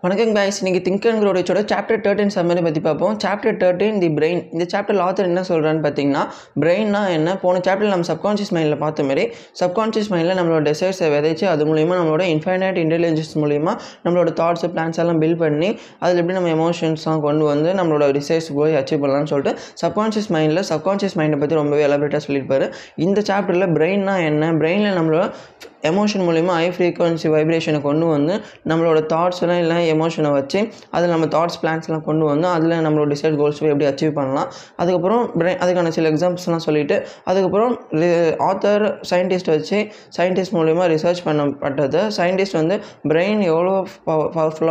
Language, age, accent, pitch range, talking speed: Tamil, 20-39, native, 155-185 Hz, 135 wpm